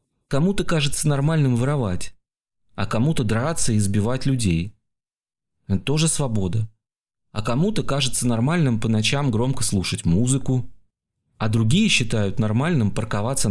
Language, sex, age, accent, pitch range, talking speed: Russian, male, 30-49, native, 105-135 Hz, 120 wpm